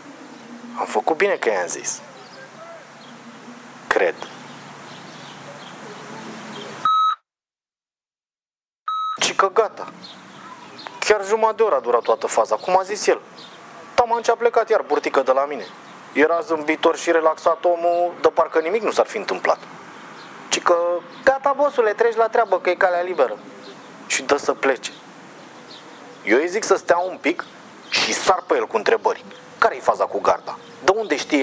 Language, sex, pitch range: Romanian, male, 160-265 Hz